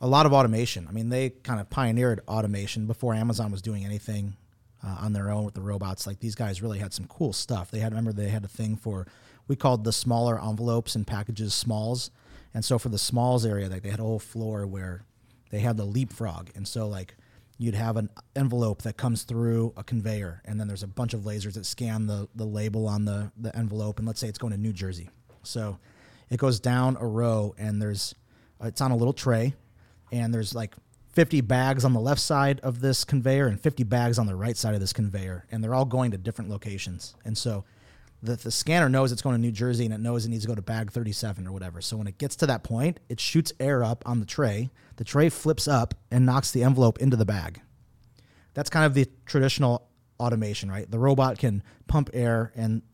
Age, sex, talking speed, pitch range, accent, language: 30-49, male, 230 wpm, 105-125 Hz, American, English